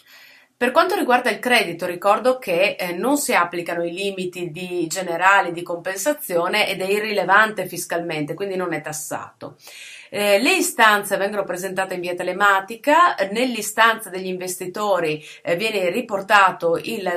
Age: 30-49